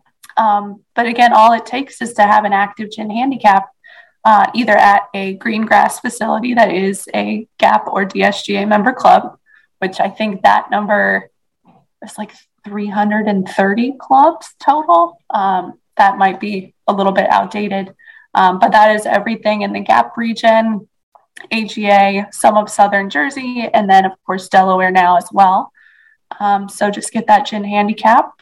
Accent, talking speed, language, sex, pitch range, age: American, 160 wpm, English, female, 200-225 Hz, 20-39